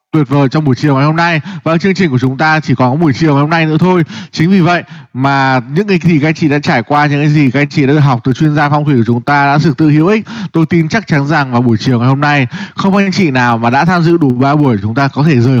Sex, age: male, 20-39